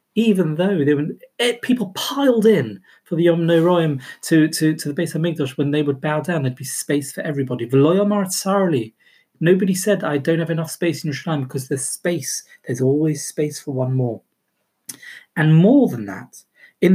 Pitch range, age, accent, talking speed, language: 140-200 Hz, 40-59, British, 190 wpm, English